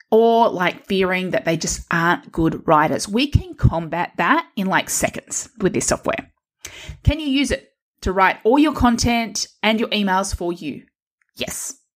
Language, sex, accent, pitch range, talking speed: English, female, Australian, 170-245 Hz, 170 wpm